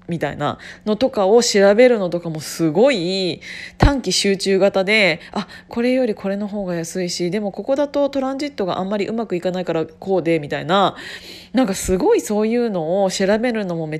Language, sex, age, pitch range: Japanese, female, 20-39, 185-240 Hz